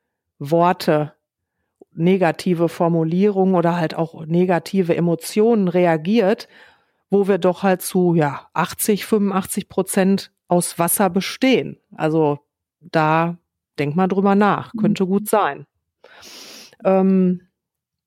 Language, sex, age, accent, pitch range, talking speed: German, female, 40-59, German, 170-215 Hz, 105 wpm